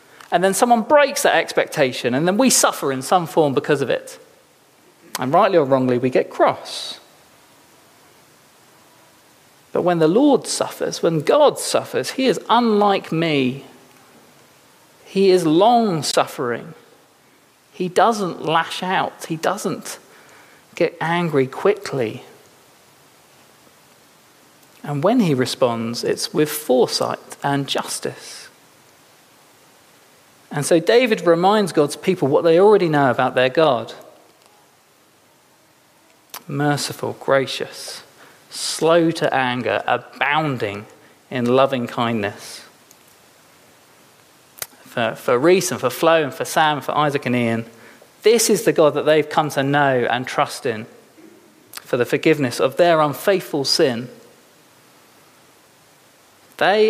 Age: 40-59